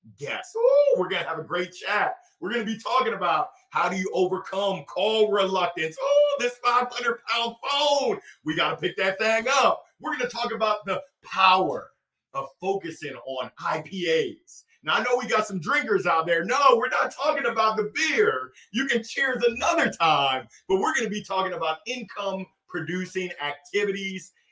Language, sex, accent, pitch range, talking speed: English, male, American, 180-255 Hz, 175 wpm